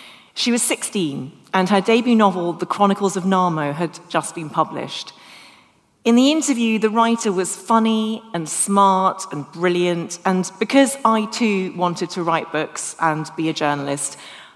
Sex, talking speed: female, 155 wpm